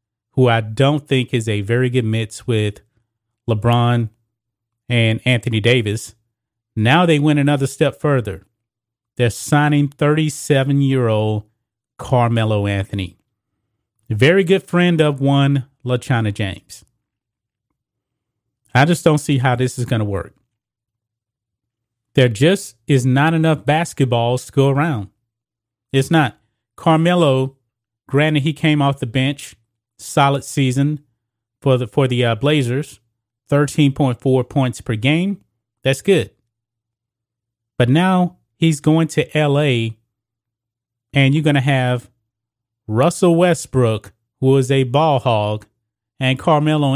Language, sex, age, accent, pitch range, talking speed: English, male, 30-49, American, 115-140 Hz, 125 wpm